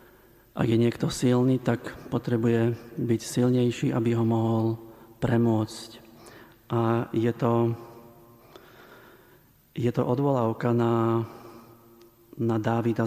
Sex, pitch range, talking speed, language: male, 115-120 Hz, 90 wpm, Slovak